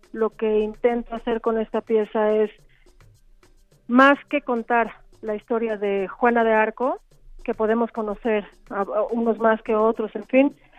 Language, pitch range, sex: Spanish, 210-240 Hz, female